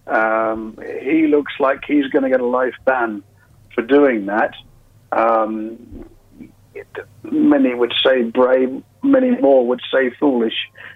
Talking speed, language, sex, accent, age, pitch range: 130 wpm, English, male, British, 50-69, 115-150 Hz